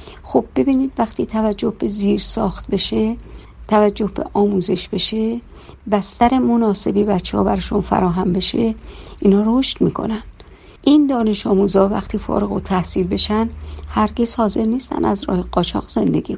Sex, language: female, Persian